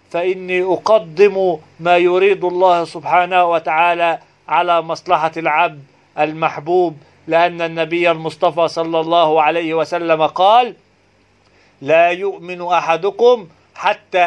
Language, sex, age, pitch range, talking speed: Arabic, male, 40-59, 170-195 Hz, 95 wpm